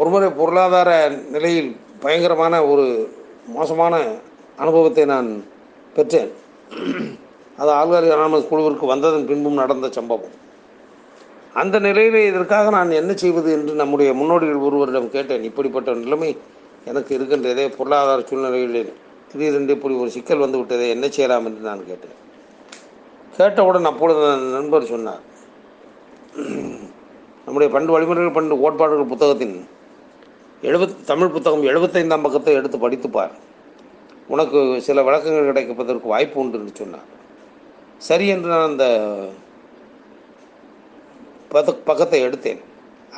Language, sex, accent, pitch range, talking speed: Tamil, male, native, 135-170 Hz, 105 wpm